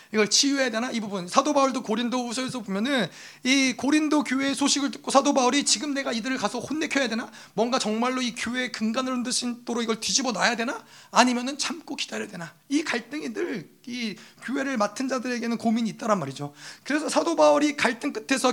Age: 30-49